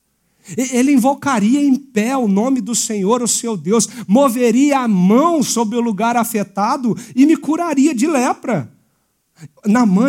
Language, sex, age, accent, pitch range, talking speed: Portuguese, male, 50-69, Brazilian, 170-235 Hz, 145 wpm